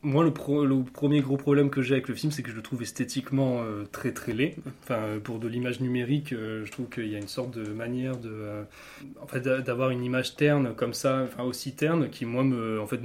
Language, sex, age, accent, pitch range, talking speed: French, male, 20-39, French, 115-140 Hz, 255 wpm